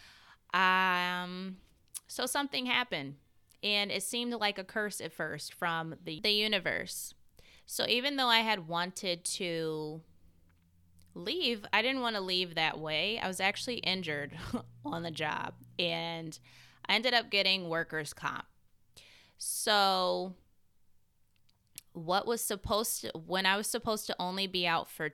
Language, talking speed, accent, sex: English, 140 wpm, American, female